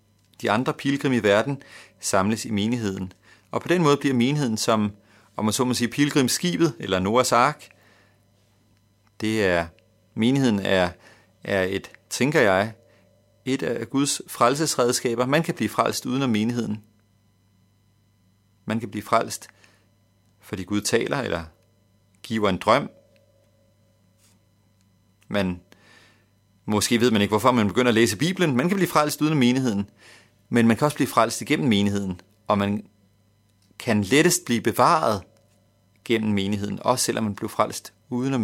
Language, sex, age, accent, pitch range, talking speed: Danish, male, 40-59, native, 100-120 Hz, 145 wpm